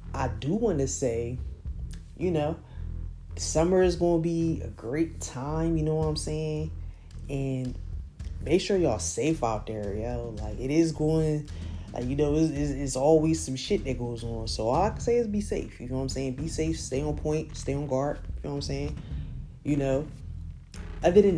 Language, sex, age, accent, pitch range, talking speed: English, female, 20-39, American, 120-160 Hz, 205 wpm